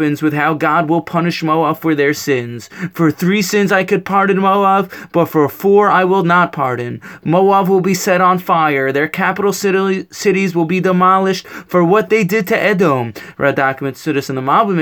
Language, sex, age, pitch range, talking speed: English, male, 20-39, 160-190 Hz, 185 wpm